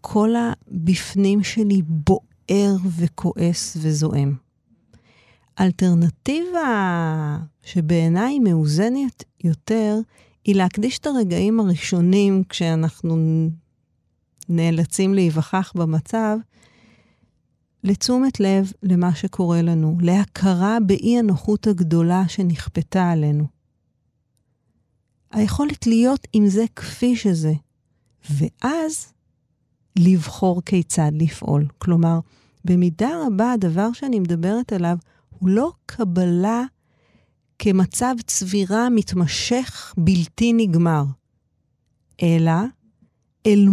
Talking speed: 80 wpm